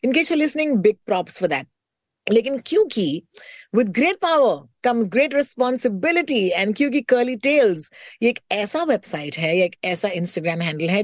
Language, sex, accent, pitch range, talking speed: Hindi, female, native, 185-265 Hz, 70 wpm